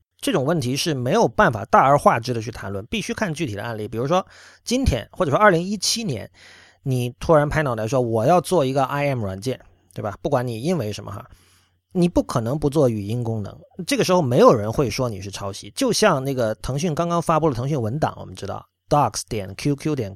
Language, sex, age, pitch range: Chinese, male, 30-49, 120-170 Hz